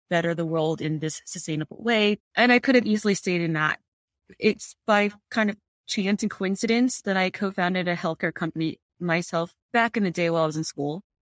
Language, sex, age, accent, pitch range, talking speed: English, female, 30-49, American, 165-205 Hz, 205 wpm